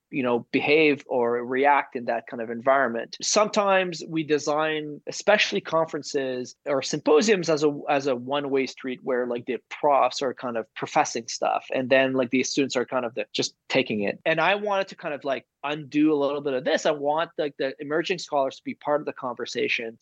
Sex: male